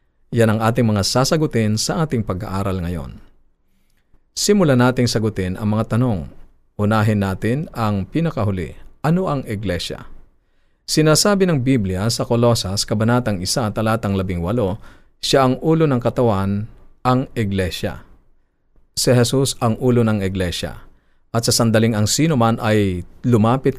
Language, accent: Filipino, native